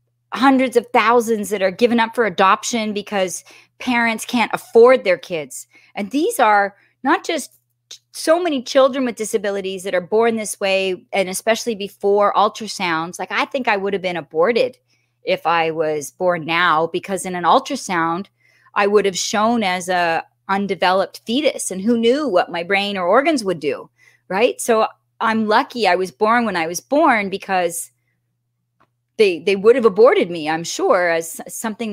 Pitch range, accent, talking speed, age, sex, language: 180-235 Hz, American, 170 wpm, 30-49, female, English